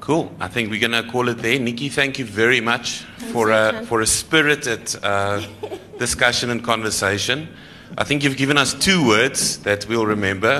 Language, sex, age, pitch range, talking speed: English, male, 30-49, 100-115 Hz, 180 wpm